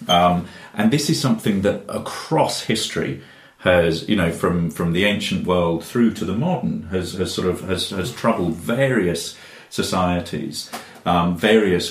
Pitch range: 85-120 Hz